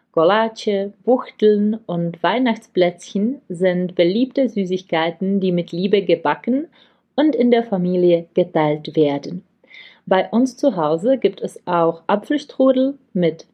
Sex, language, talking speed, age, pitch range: female, Czech, 115 wpm, 30-49, 175-225 Hz